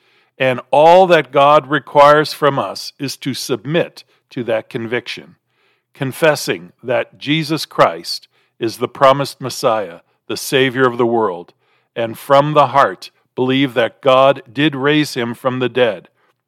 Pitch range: 125-155 Hz